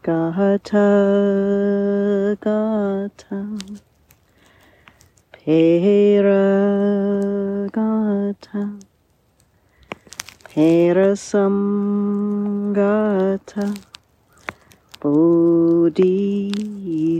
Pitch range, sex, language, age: 165-200 Hz, female, English, 40-59